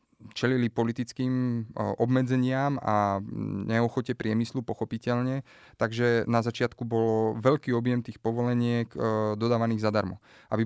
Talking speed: 100 wpm